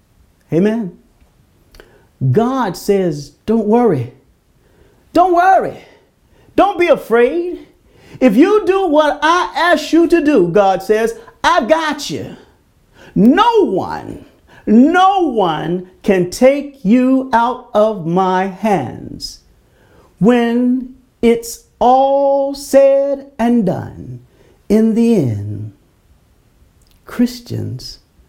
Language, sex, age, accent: English, male, 50-69, American